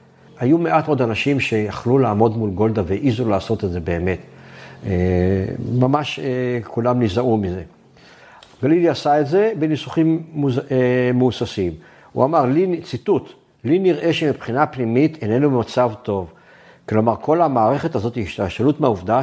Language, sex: Hebrew, male